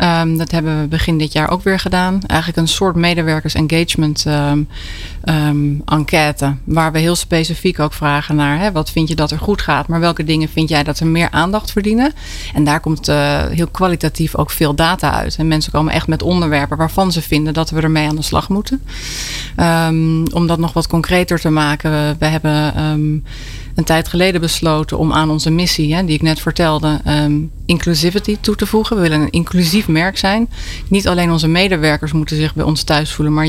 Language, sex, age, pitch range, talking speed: Dutch, female, 30-49, 155-175 Hz, 195 wpm